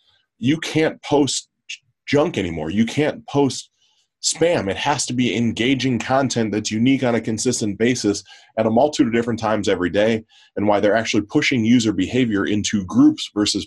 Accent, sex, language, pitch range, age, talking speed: American, male, English, 100-130 Hz, 20-39, 170 wpm